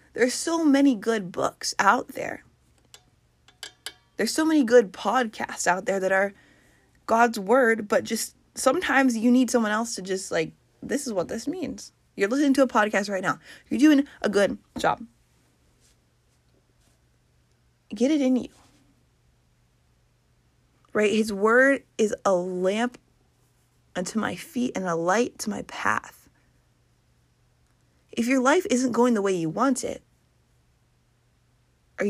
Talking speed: 140 wpm